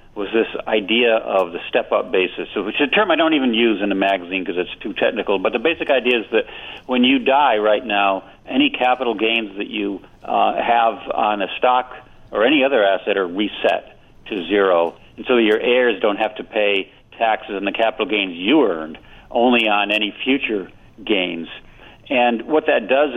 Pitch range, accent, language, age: 100-125 Hz, American, English, 50-69